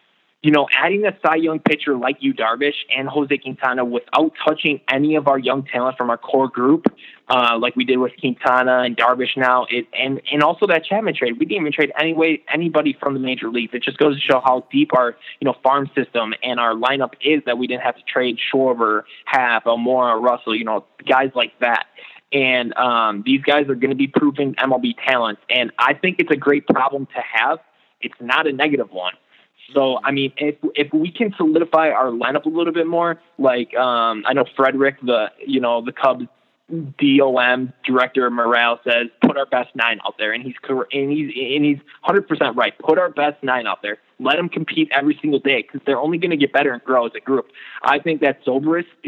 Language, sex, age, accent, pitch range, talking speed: English, male, 20-39, American, 125-150 Hz, 215 wpm